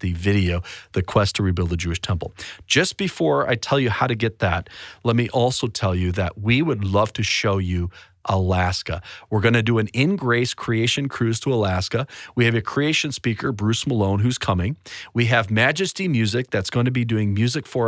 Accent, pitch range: American, 100-125 Hz